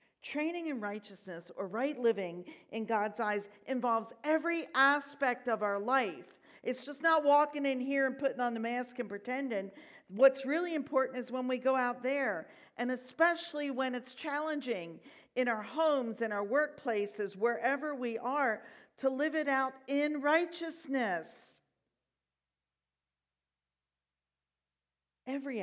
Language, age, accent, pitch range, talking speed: English, 50-69, American, 200-275 Hz, 135 wpm